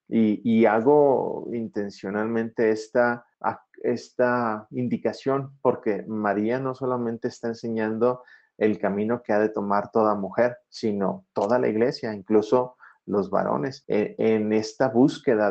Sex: male